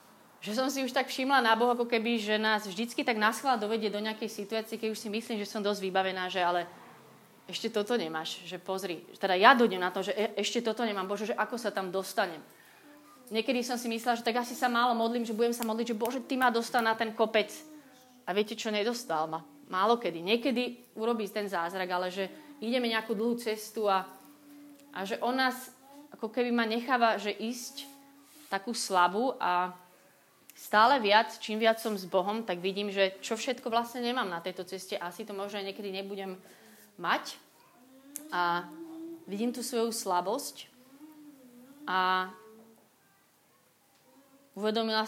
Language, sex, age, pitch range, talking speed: Slovak, female, 30-49, 195-245 Hz, 180 wpm